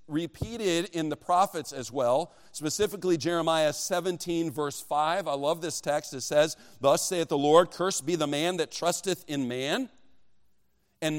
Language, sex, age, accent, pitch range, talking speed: English, male, 40-59, American, 160-205 Hz, 160 wpm